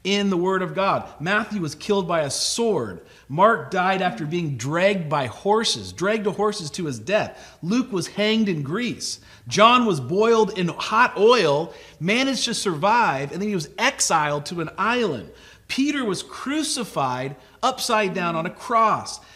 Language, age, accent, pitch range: English, 40-59, American, 185-245 Hz